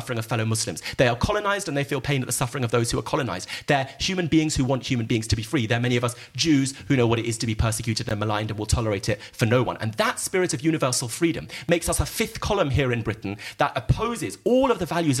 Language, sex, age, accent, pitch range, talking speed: English, male, 40-59, British, 120-160 Hz, 280 wpm